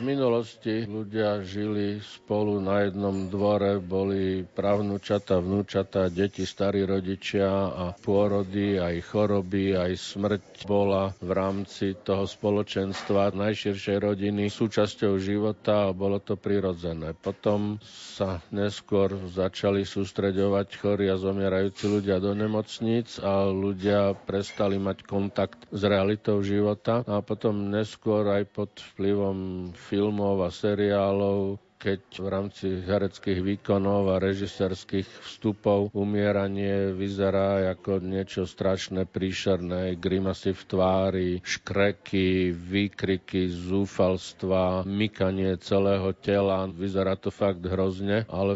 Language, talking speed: Slovak, 110 wpm